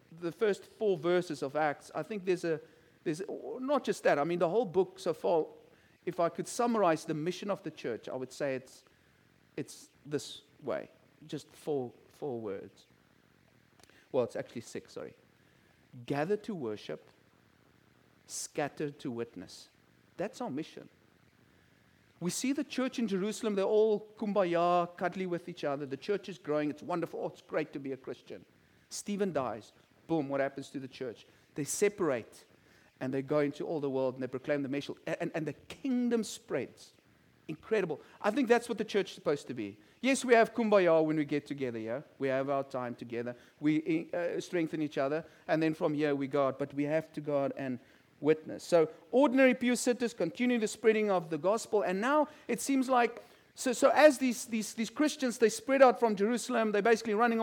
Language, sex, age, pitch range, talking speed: English, male, 50-69, 145-225 Hz, 190 wpm